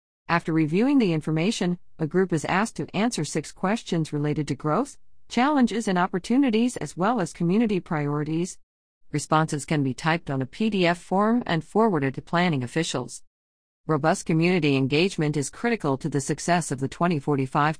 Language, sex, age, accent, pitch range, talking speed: English, female, 50-69, American, 145-190 Hz, 160 wpm